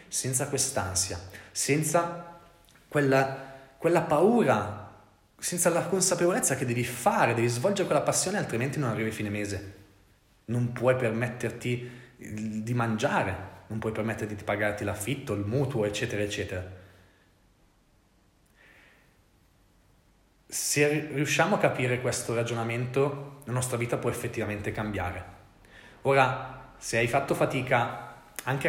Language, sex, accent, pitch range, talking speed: Italian, male, native, 110-145 Hz, 115 wpm